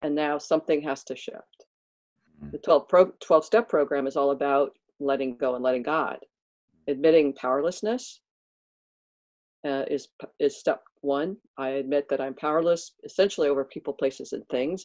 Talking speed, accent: 140 wpm, American